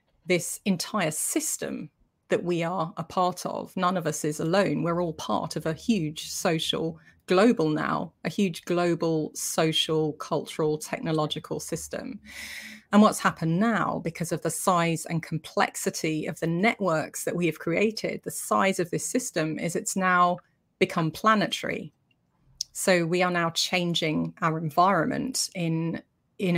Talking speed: 150 wpm